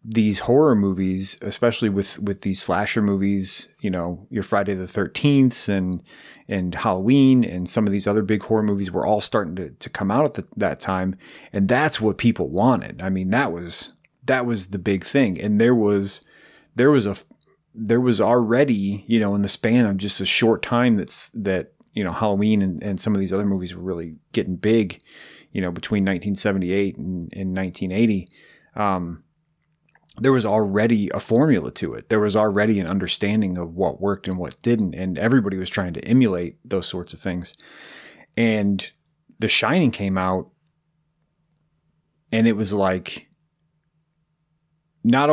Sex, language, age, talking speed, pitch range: male, English, 30-49, 175 wpm, 95-120 Hz